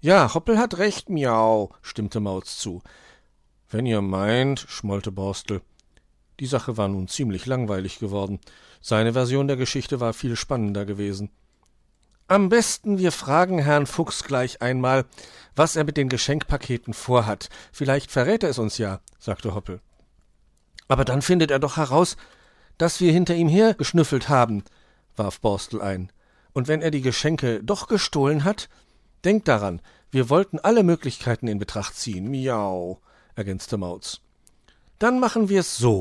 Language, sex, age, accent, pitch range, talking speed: German, male, 50-69, German, 105-165 Hz, 150 wpm